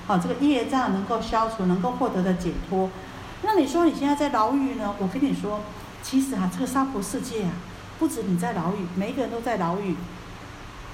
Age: 50-69